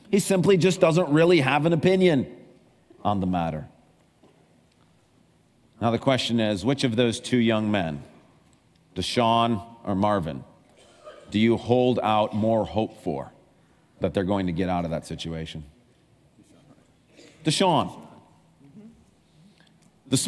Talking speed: 125 wpm